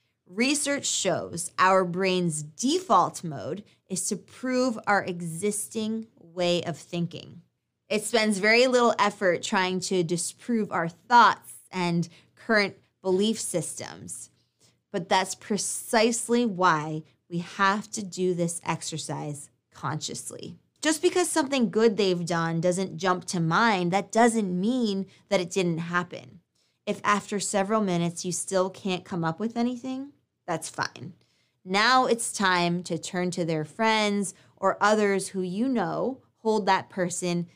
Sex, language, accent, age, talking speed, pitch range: female, English, American, 20-39, 135 wpm, 175-225 Hz